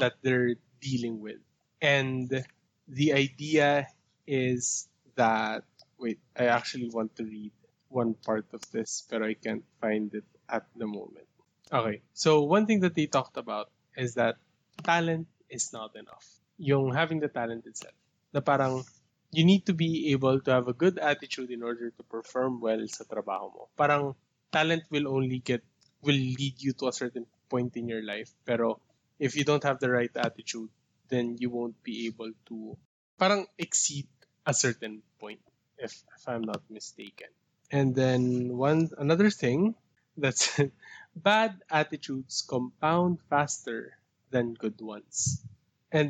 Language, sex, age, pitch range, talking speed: Filipino, male, 20-39, 120-155 Hz, 155 wpm